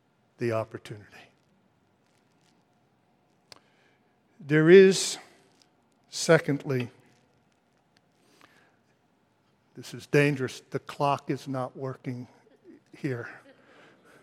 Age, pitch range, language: 60-79, 145-185 Hz, English